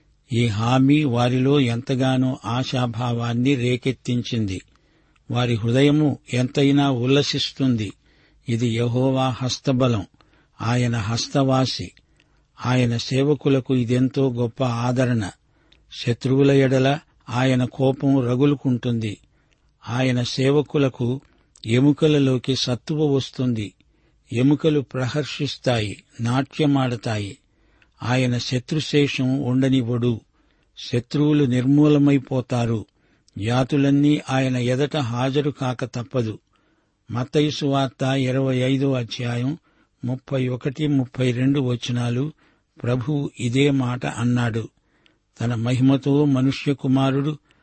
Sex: male